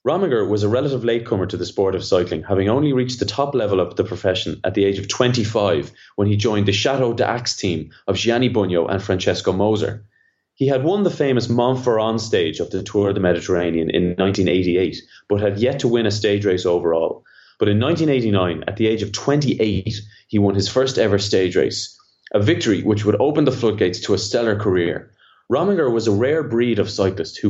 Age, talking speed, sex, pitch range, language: 20-39, 205 wpm, male, 100-120 Hz, English